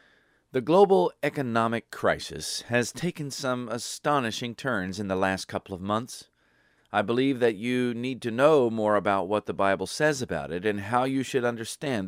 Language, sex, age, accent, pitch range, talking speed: English, male, 40-59, American, 105-135 Hz, 175 wpm